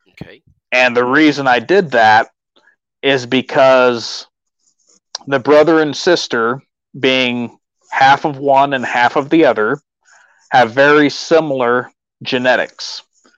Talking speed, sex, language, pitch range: 110 wpm, male, English, 125-145 Hz